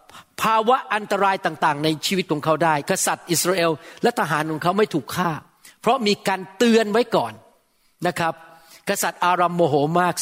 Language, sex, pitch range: Thai, male, 170-215 Hz